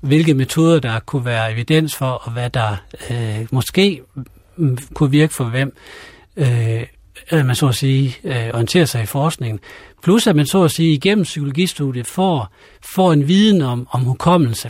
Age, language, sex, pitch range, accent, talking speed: 60-79, Danish, male, 120-155 Hz, native, 165 wpm